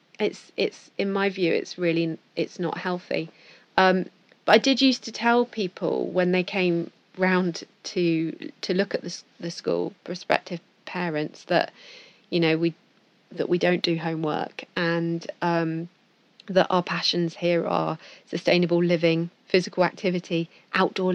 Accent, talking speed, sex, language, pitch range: British, 150 wpm, female, English, 170-195 Hz